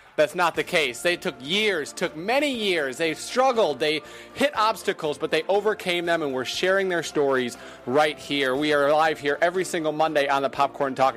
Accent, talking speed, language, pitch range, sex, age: American, 200 wpm, English, 140-180 Hz, male, 30-49